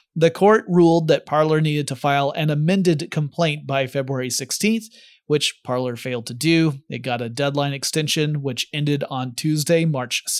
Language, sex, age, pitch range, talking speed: English, male, 30-49, 135-165 Hz, 165 wpm